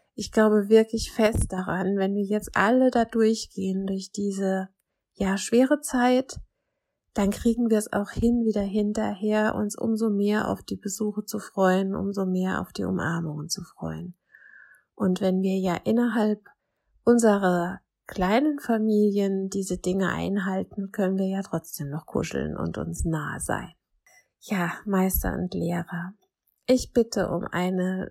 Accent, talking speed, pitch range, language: German, 145 wpm, 190-220 Hz, German